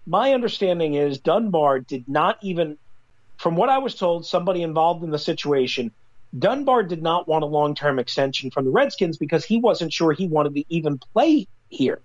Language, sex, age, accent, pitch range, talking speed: English, male, 40-59, American, 145-185 Hz, 185 wpm